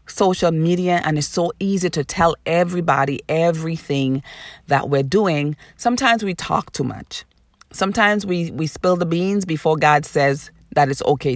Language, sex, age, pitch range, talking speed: English, female, 30-49, 140-180 Hz, 160 wpm